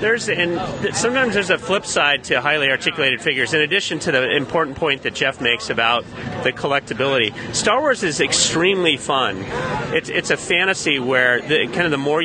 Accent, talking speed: American, 185 wpm